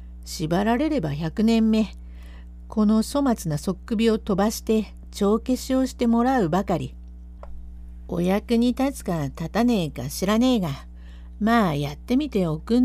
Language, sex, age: Japanese, female, 50-69